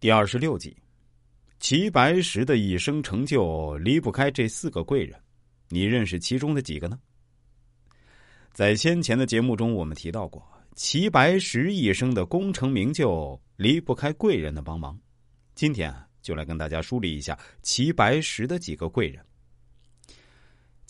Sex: male